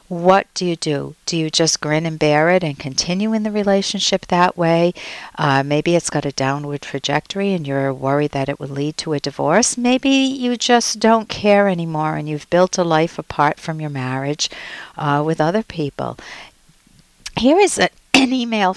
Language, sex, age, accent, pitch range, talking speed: English, female, 60-79, American, 150-195 Hz, 185 wpm